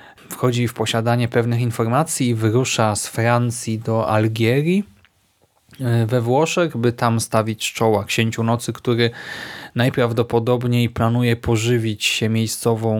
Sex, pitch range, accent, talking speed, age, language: male, 115-135 Hz, native, 115 wpm, 20-39, Polish